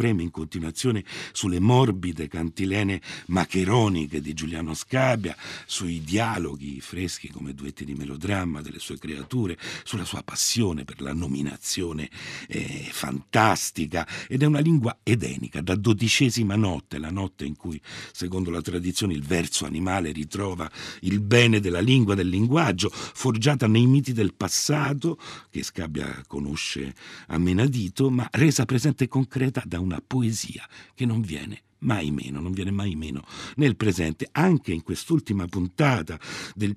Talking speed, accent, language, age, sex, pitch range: 140 wpm, native, Italian, 60-79, male, 80-120 Hz